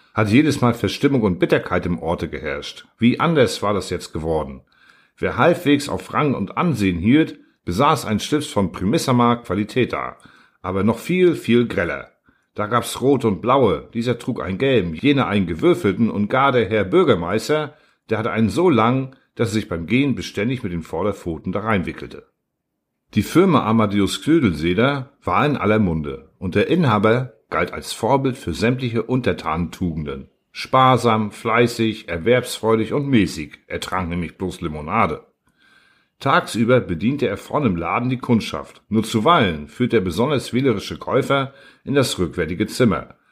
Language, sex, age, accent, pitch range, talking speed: German, male, 50-69, German, 95-130 Hz, 155 wpm